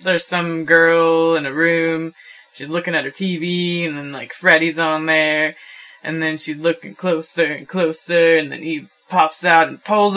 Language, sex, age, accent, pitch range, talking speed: English, female, 20-39, American, 155-190 Hz, 185 wpm